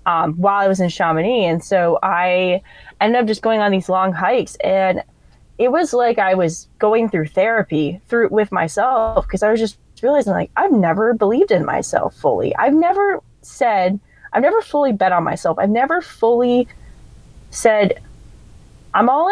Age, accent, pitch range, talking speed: 20-39, American, 185-230 Hz, 175 wpm